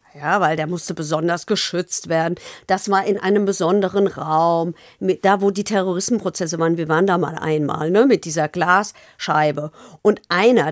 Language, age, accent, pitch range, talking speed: German, 50-69, German, 180-245 Hz, 170 wpm